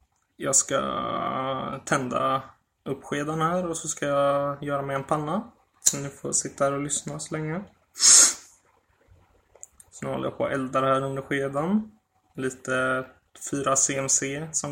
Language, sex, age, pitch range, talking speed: Swedish, male, 20-39, 95-145 Hz, 145 wpm